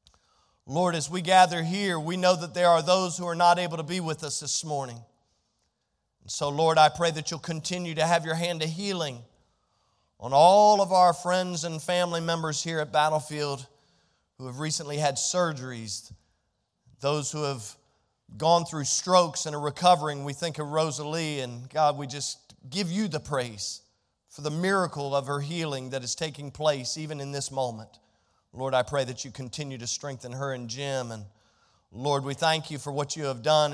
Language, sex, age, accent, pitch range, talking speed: English, male, 40-59, American, 130-165 Hz, 190 wpm